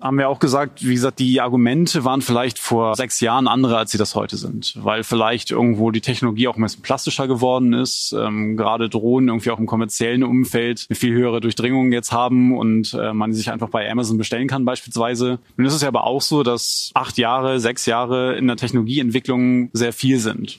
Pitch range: 115-130 Hz